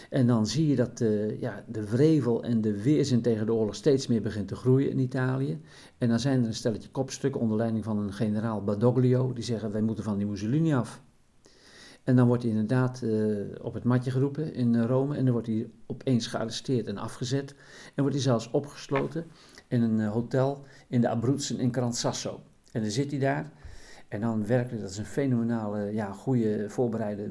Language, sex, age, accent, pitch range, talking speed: Dutch, male, 50-69, Dutch, 110-130 Hz, 195 wpm